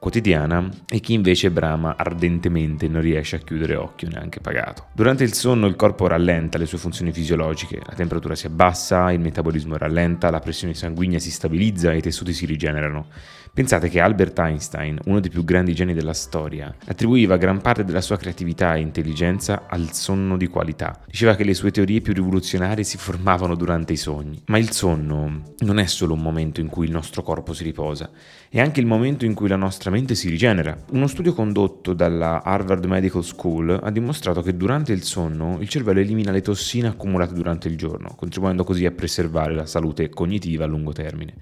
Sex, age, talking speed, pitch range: male, 30-49, 190 wpm, 80-100 Hz